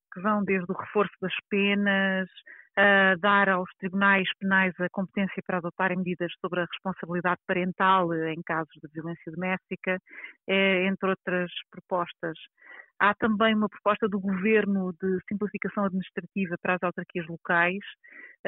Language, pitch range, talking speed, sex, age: Portuguese, 180-200 Hz, 135 wpm, female, 30-49